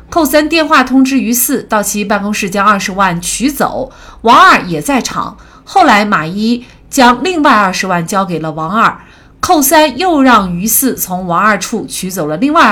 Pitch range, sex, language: 185-260 Hz, female, Chinese